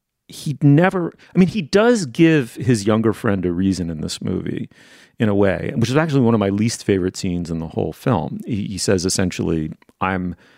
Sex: male